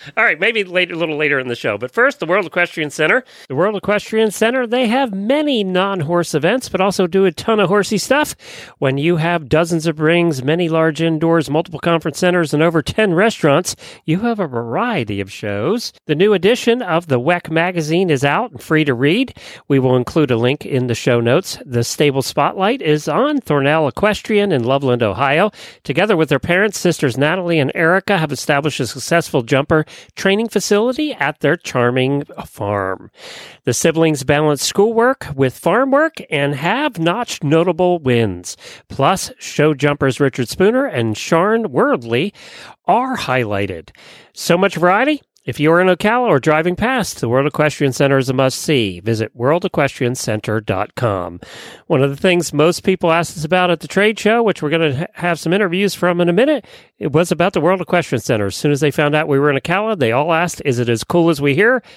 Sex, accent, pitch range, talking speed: male, American, 135-190 Hz, 190 wpm